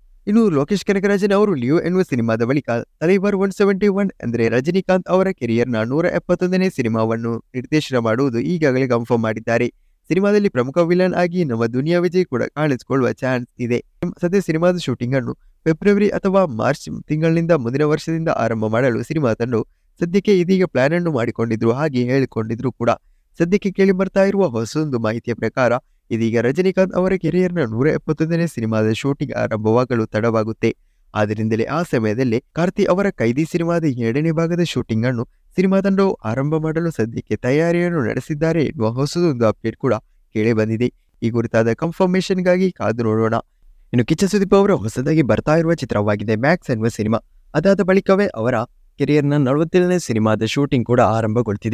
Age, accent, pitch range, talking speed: 20-39, Indian, 115-175 Hz, 35 wpm